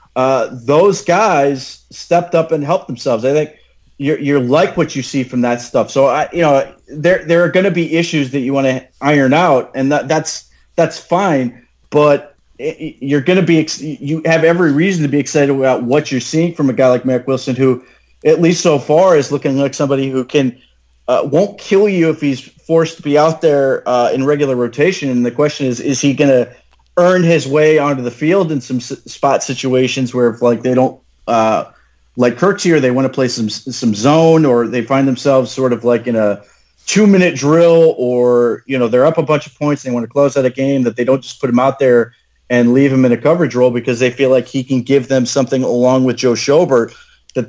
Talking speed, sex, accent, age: 230 wpm, male, American, 30-49